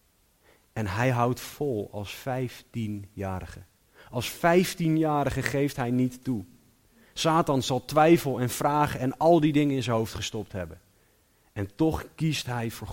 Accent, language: Dutch, Dutch